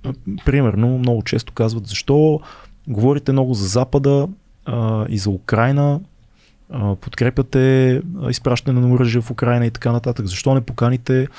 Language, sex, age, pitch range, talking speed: Bulgarian, male, 20-39, 110-140 Hz, 135 wpm